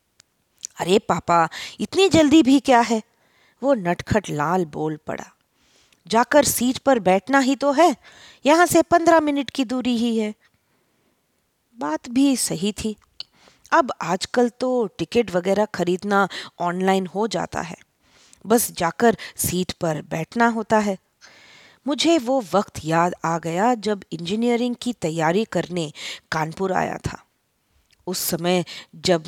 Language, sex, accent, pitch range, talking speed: English, female, Indian, 175-245 Hz, 130 wpm